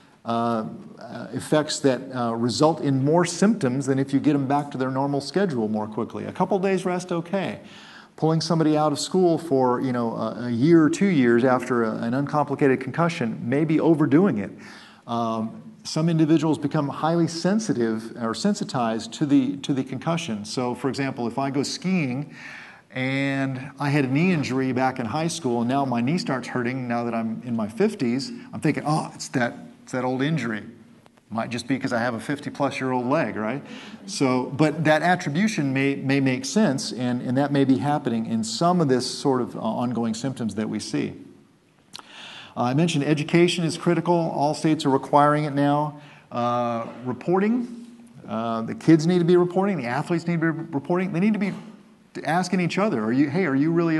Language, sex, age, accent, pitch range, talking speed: English, male, 40-59, American, 125-170 Hz, 195 wpm